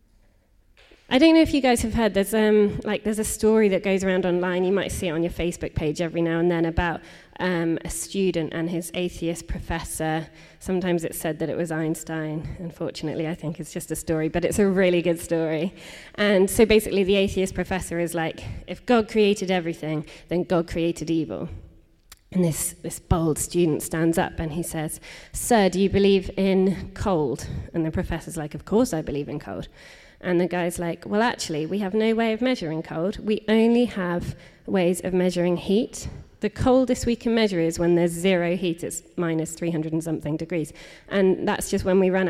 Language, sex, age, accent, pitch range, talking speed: English, female, 20-39, British, 165-195 Hz, 200 wpm